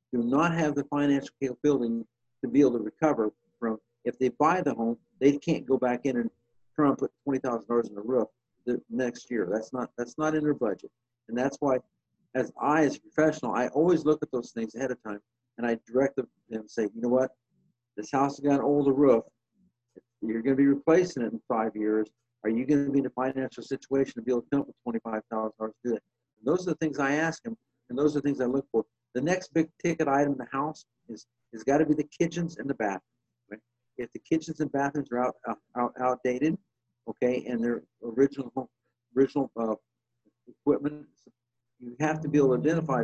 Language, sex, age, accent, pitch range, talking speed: English, male, 50-69, American, 120-150 Hz, 220 wpm